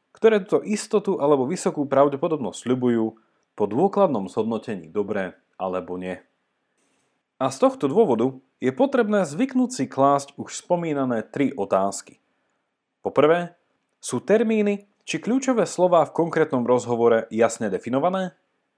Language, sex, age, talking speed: Slovak, male, 30-49, 120 wpm